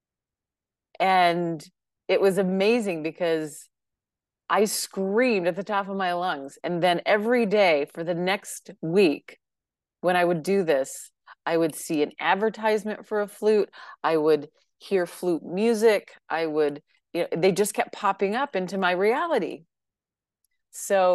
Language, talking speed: English, 150 wpm